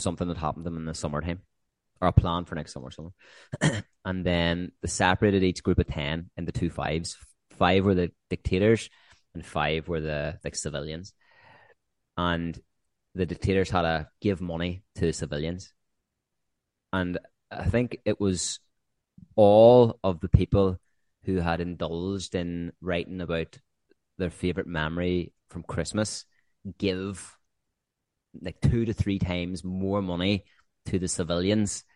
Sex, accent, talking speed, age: male, Irish, 145 wpm, 20-39